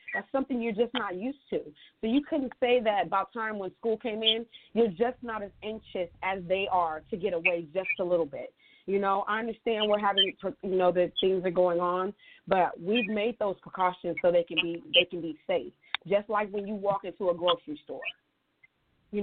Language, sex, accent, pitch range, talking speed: English, female, American, 180-235 Hz, 215 wpm